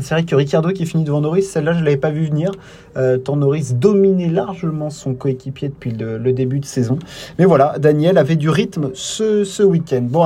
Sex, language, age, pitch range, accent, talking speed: male, French, 30-49, 135-175 Hz, French, 220 wpm